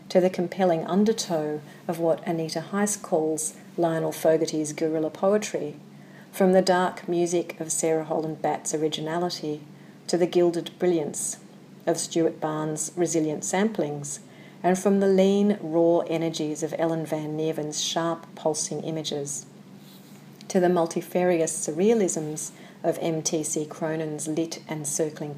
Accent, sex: Australian, female